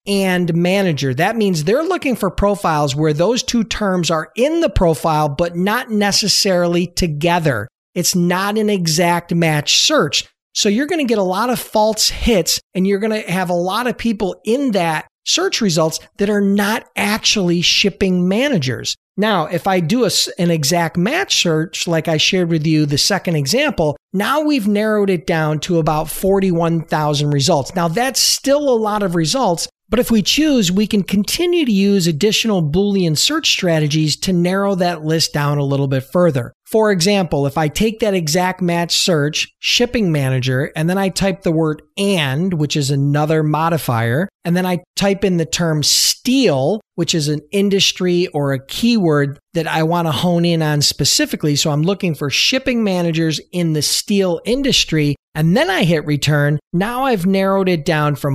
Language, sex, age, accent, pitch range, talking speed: English, male, 40-59, American, 155-205 Hz, 180 wpm